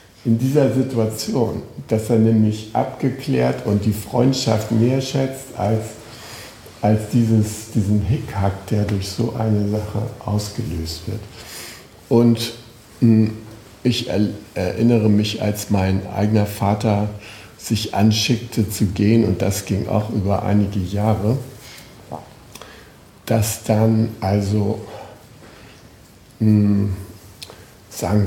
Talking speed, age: 100 wpm, 60-79